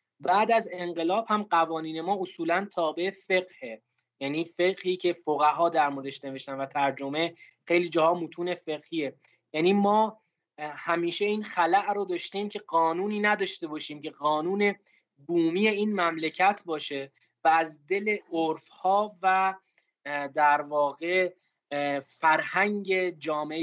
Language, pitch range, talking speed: Persian, 150-190 Hz, 125 wpm